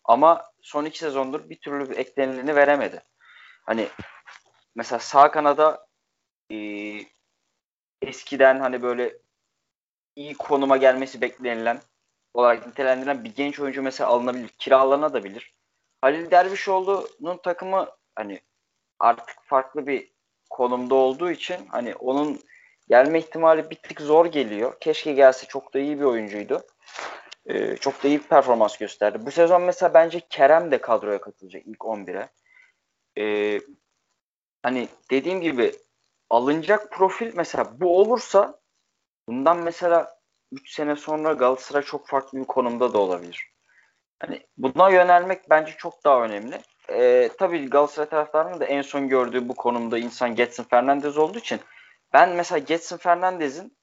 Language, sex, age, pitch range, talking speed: Turkish, male, 30-49, 125-170 Hz, 130 wpm